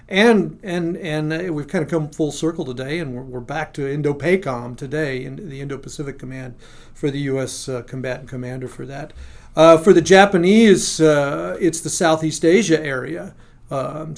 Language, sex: English, male